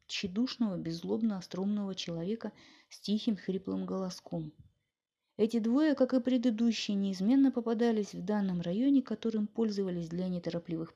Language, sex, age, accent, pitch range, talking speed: Russian, female, 20-39, native, 180-235 Hz, 115 wpm